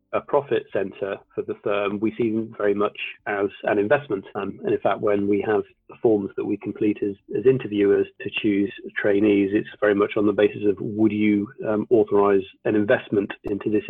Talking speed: 205 wpm